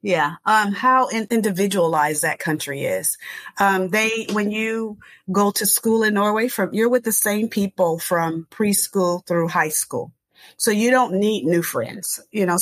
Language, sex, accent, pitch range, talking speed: English, female, American, 175-230 Hz, 165 wpm